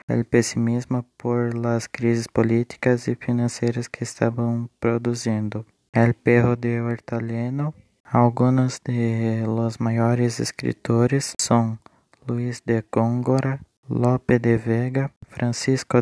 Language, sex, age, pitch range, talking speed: Portuguese, male, 20-39, 115-125 Hz, 105 wpm